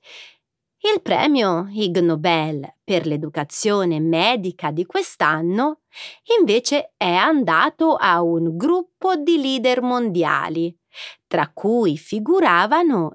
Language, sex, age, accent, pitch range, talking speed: Italian, female, 30-49, native, 165-275 Hz, 90 wpm